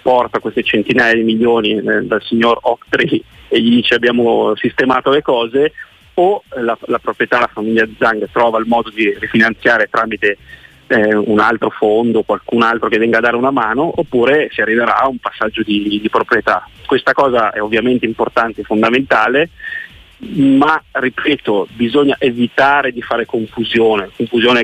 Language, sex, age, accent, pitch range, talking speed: Italian, male, 30-49, native, 115-135 Hz, 160 wpm